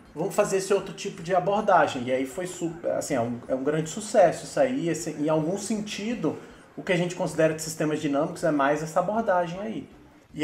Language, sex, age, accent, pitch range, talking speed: Portuguese, male, 30-49, Brazilian, 145-190 Hz, 205 wpm